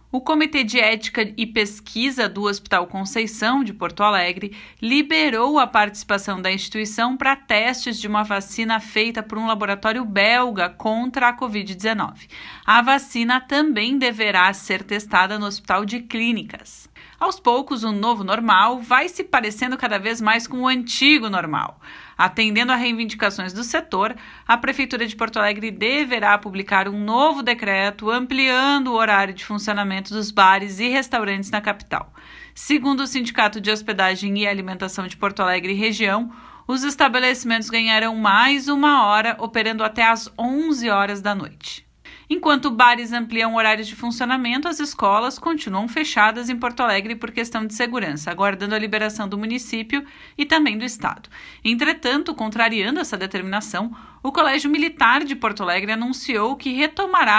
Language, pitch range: Portuguese, 205-260 Hz